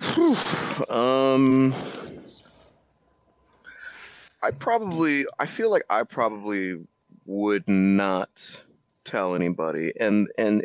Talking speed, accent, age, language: 80 wpm, American, 30-49, English